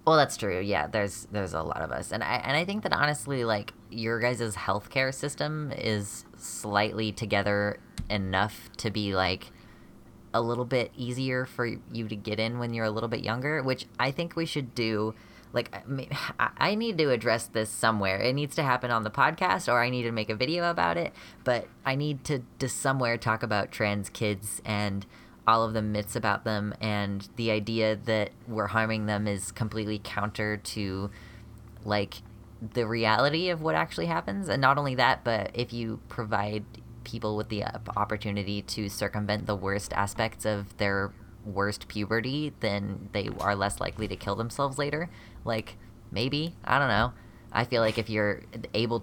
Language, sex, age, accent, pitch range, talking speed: English, female, 10-29, American, 105-120 Hz, 185 wpm